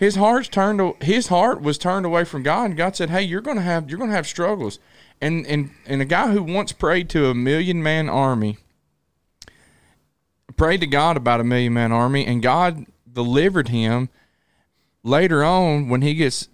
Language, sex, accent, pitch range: English, male, American, 115-165 Hz